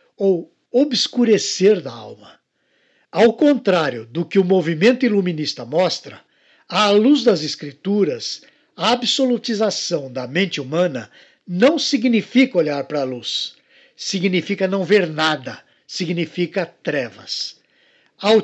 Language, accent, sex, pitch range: Portuguese, Brazilian, male, 165-225 Hz